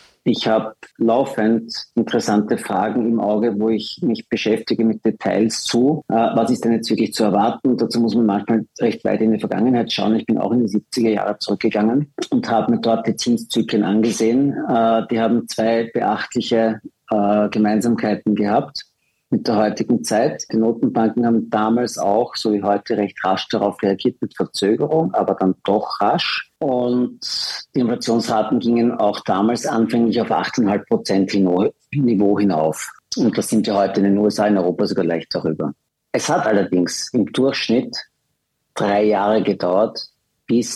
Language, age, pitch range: German, 50-69, 105-115 Hz